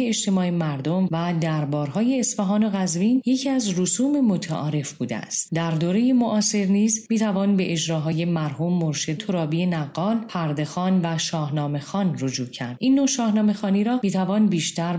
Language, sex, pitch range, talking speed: Persian, female, 155-215 Hz, 145 wpm